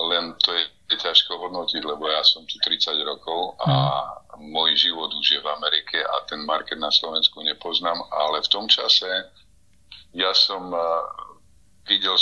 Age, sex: 50-69, male